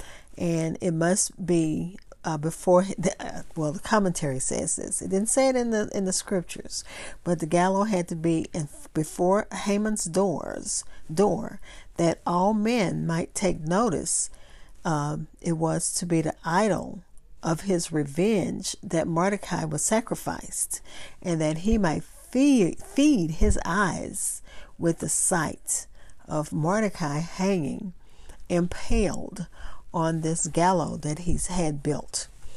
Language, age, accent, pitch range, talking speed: English, 50-69, American, 160-200 Hz, 140 wpm